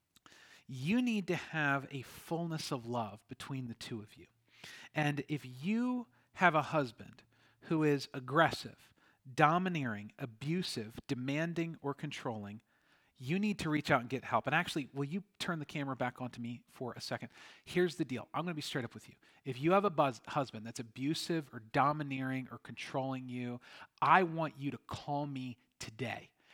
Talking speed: 180 wpm